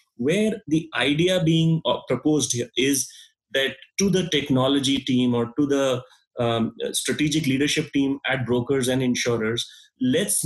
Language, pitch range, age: English, 125-150 Hz, 30-49